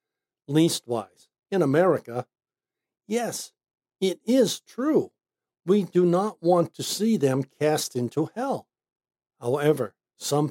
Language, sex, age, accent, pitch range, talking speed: English, male, 60-79, American, 145-215 Hz, 110 wpm